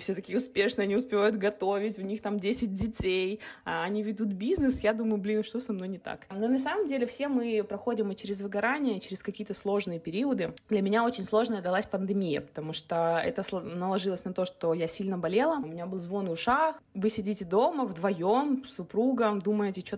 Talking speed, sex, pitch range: 195 wpm, female, 195-235 Hz